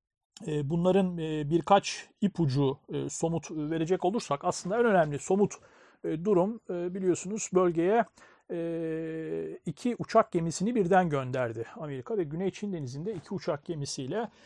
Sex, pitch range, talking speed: male, 155-200 Hz, 110 wpm